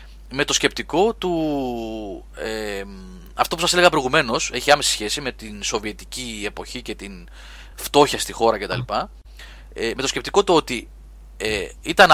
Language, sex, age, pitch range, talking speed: Greek, male, 30-49, 105-175 Hz, 155 wpm